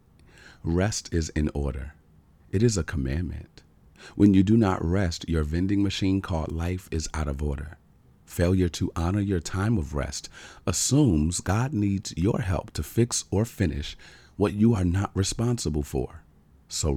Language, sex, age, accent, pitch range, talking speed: English, male, 40-59, American, 75-95 Hz, 160 wpm